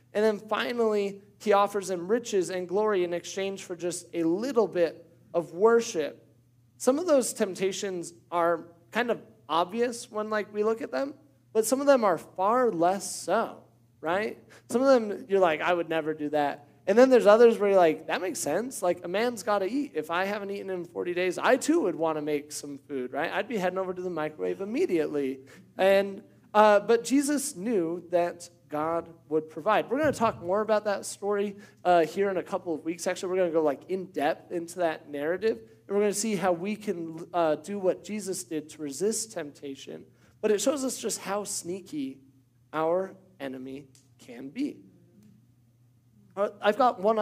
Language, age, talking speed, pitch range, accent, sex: English, 30-49, 195 wpm, 155-210 Hz, American, male